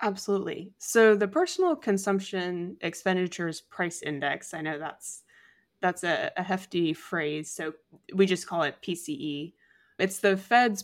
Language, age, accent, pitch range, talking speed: English, 20-39, American, 160-195 Hz, 140 wpm